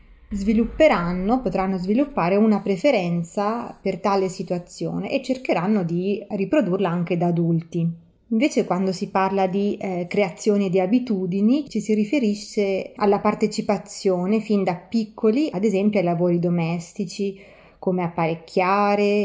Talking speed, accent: 120 wpm, native